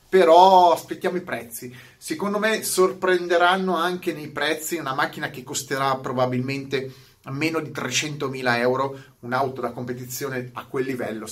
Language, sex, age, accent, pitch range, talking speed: Italian, male, 30-49, native, 140-190 Hz, 135 wpm